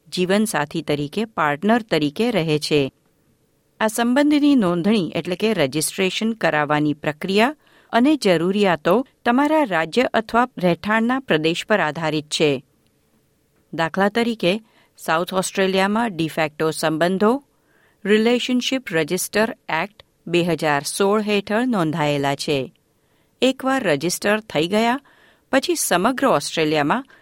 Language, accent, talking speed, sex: Gujarati, native, 100 wpm, female